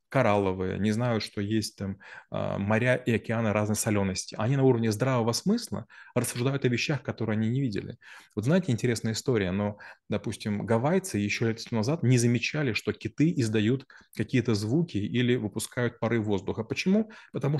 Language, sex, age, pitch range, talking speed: Russian, male, 30-49, 105-130 Hz, 155 wpm